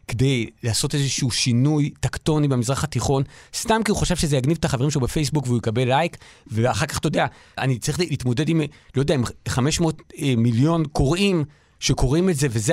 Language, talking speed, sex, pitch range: Hebrew, 185 wpm, male, 120-170 Hz